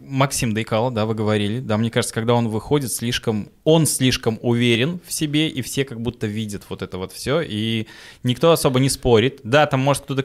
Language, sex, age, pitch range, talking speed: Russian, male, 20-39, 115-150 Hz, 205 wpm